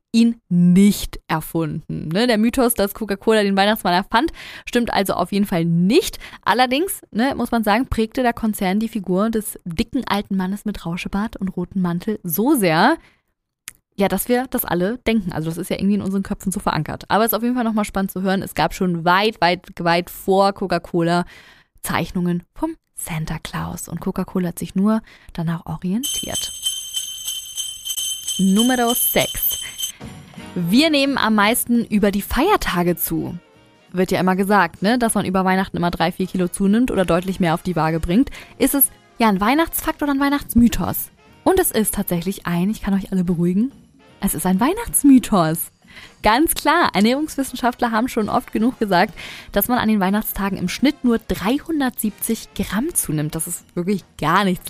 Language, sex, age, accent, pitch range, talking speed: German, female, 20-39, German, 180-235 Hz, 170 wpm